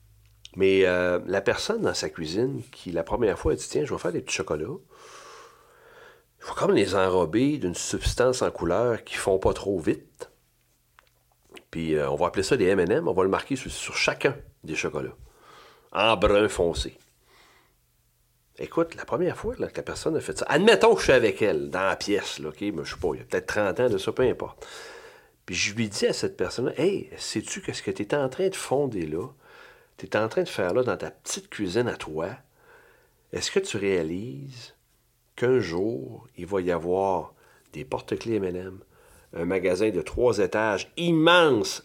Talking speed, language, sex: 210 wpm, French, male